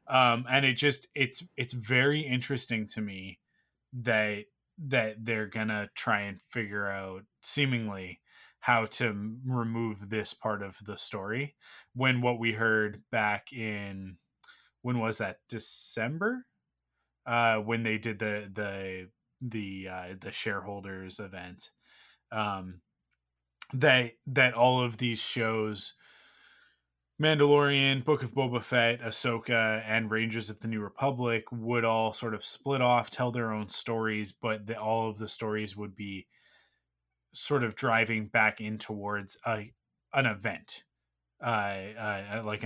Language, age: English, 20-39